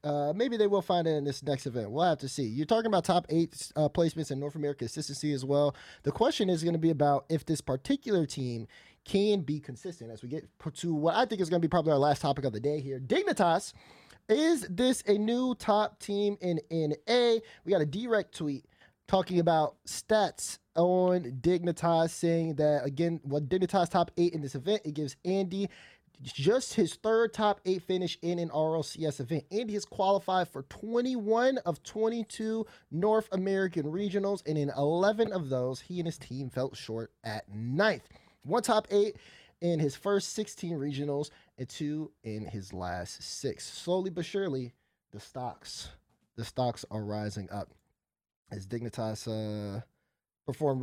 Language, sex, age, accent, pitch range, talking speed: English, male, 20-39, American, 135-190 Hz, 185 wpm